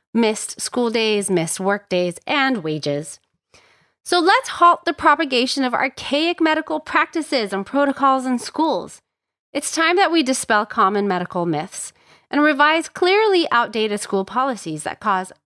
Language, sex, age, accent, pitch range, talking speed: English, female, 30-49, American, 195-310 Hz, 145 wpm